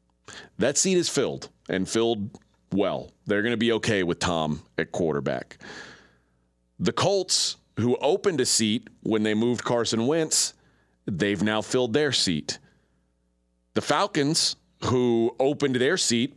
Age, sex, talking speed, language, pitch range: 40-59, male, 140 wpm, English, 105-140 Hz